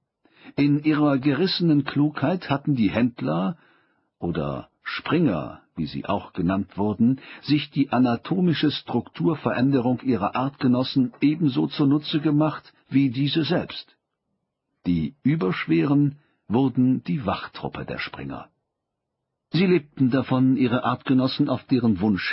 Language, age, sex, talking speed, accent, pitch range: German, 50-69, male, 110 wpm, German, 105-145 Hz